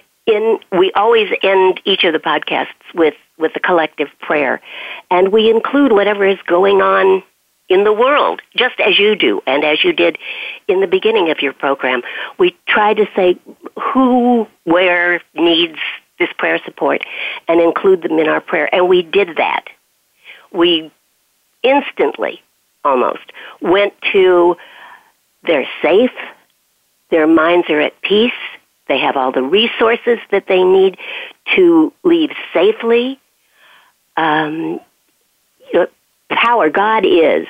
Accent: American